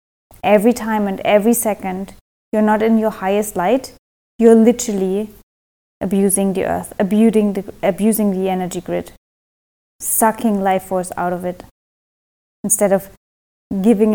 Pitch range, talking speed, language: 205-240 Hz, 130 wpm, English